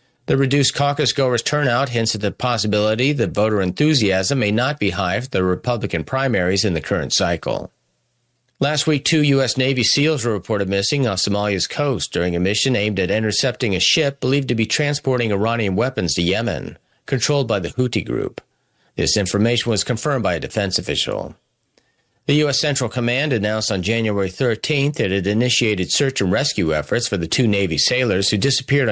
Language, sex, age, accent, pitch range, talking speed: English, male, 40-59, American, 100-130 Hz, 180 wpm